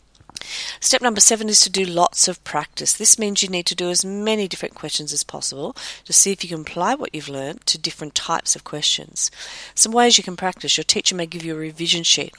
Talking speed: 230 wpm